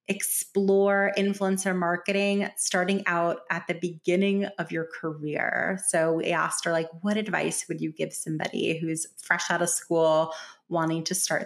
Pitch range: 170-215 Hz